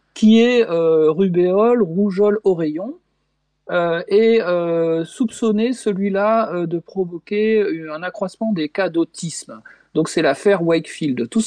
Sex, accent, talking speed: male, French, 125 wpm